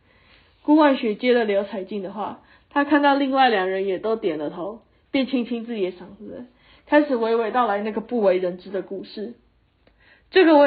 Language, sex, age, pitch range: Chinese, female, 20-39, 200-265 Hz